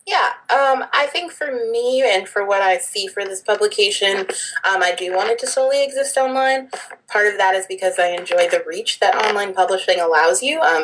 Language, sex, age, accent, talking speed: English, female, 20-39, American, 210 wpm